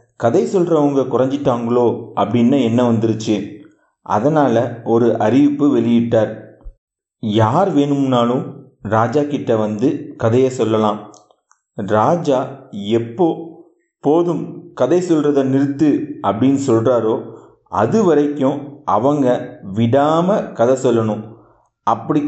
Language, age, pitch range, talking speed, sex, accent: Tamil, 40-59, 115-150 Hz, 85 wpm, male, native